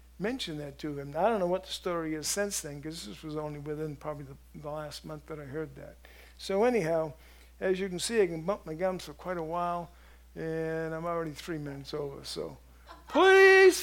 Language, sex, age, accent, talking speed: English, male, 60-79, American, 220 wpm